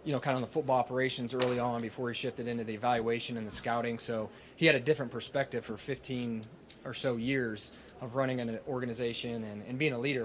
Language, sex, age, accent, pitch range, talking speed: English, male, 30-49, American, 110-125 Hz, 230 wpm